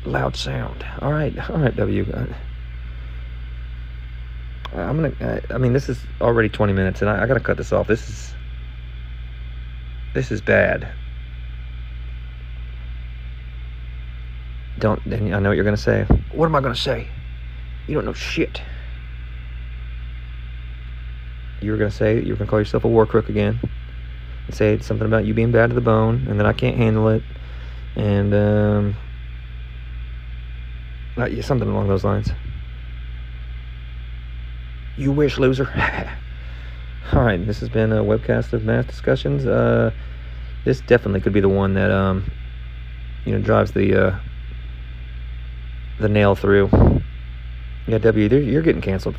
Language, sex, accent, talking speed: English, male, American, 150 wpm